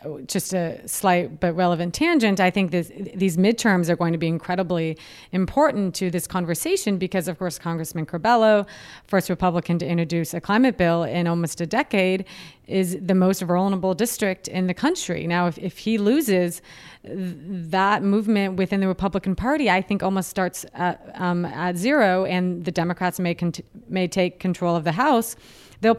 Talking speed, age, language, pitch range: 175 wpm, 30-49, English, 175-210 Hz